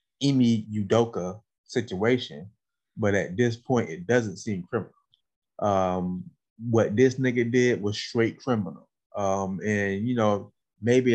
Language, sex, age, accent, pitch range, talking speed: English, male, 20-39, American, 100-115 Hz, 130 wpm